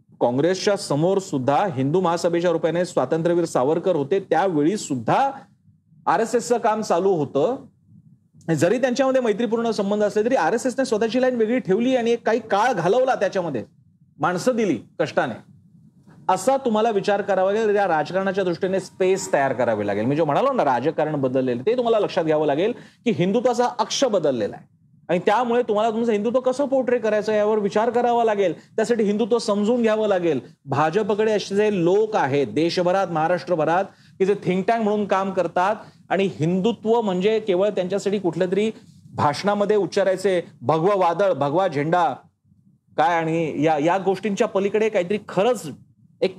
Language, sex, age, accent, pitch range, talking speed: Marathi, male, 40-59, native, 175-220 Hz, 135 wpm